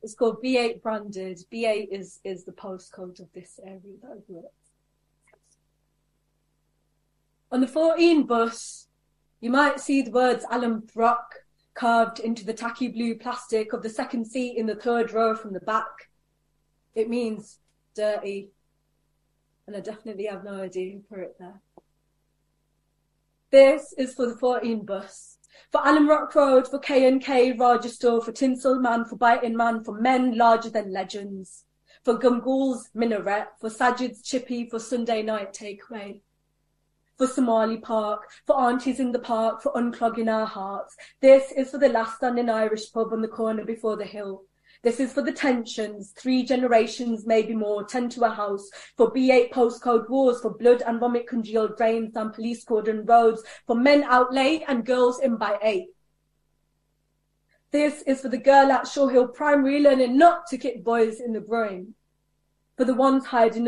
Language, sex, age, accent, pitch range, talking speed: English, female, 30-49, British, 220-255 Hz, 160 wpm